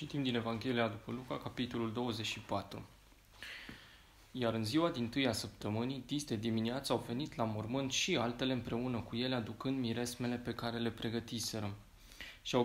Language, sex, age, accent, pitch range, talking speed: Romanian, male, 20-39, native, 115-130 Hz, 150 wpm